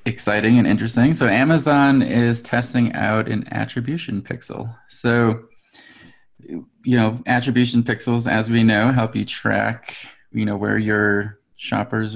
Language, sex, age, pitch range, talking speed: English, male, 20-39, 105-125 Hz, 135 wpm